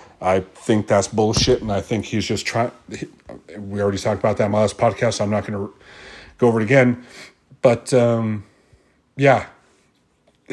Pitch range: 105-125 Hz